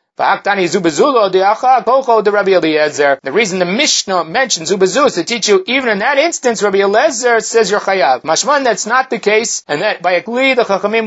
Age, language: 30-49, English